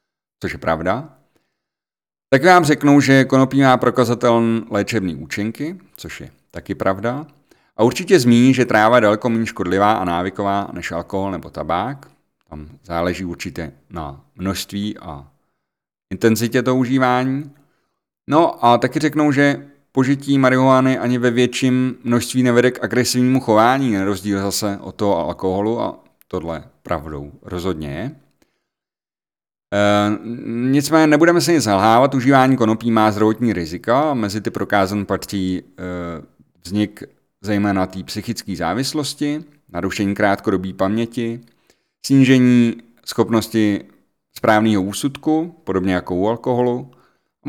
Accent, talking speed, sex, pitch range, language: native, 125 wpm, male, 95-130 Hz, Czech